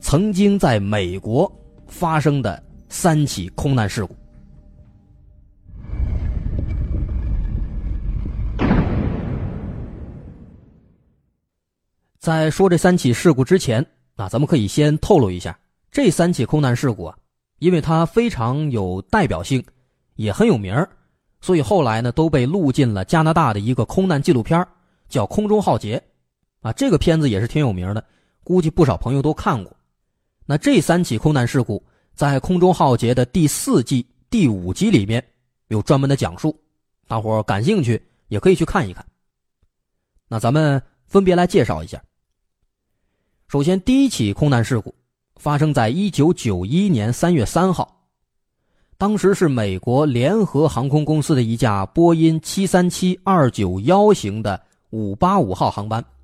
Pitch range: 100-165 Hz